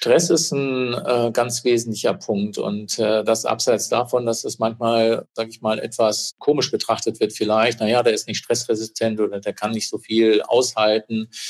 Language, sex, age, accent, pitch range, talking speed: German, male, 50-69, German, 110-125 Hz, 170 wpm